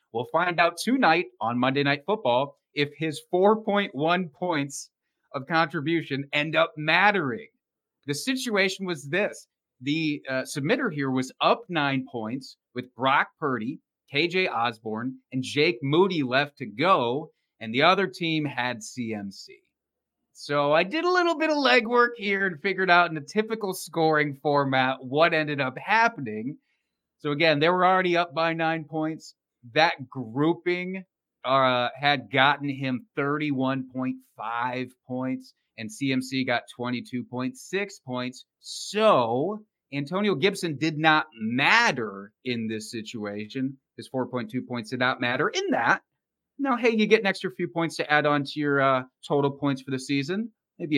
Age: 30-49